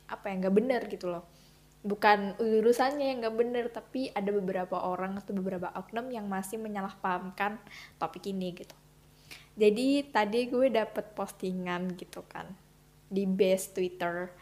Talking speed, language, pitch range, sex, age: 140 wpm, Indonesian, 195-235 Hz, female, 10-29